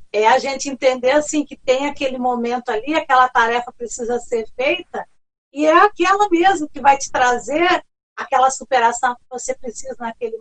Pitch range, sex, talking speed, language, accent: 240-330 Hz, female, 165 wpm, Portuguese, Brazilian